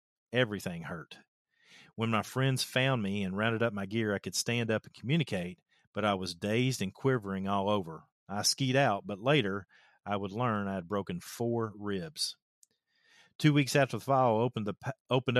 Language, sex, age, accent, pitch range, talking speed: English, male, 40-59, American, 100-125 Hz, 180 wpm